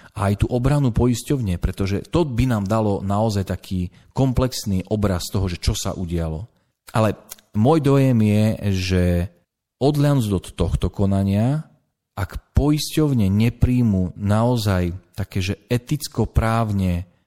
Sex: male